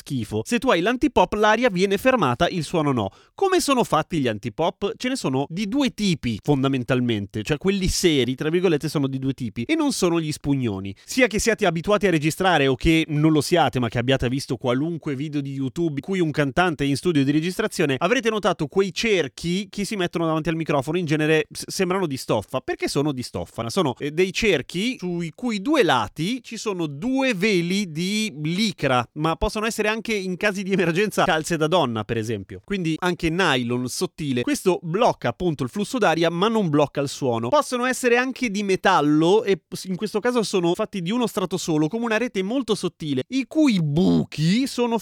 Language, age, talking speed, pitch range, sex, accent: Italian, 30-49, 200 wpm, 140-210 Hz, male, native